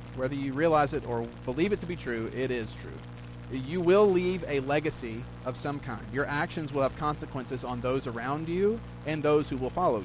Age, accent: 30-49, American